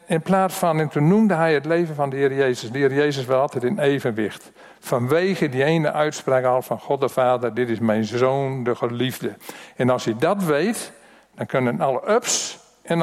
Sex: male